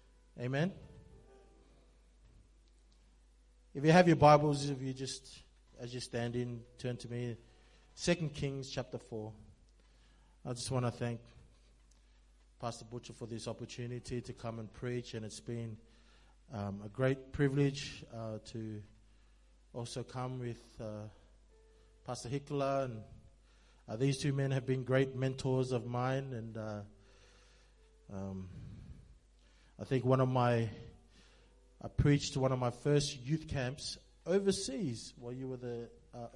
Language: English